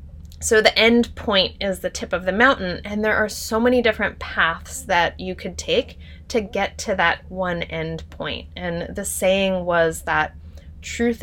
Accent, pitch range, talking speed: American, 155-200 Hz, 180 wpm